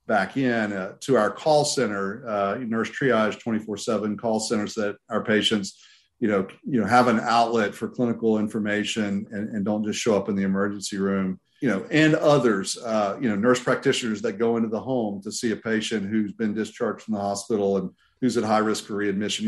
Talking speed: 215 wpm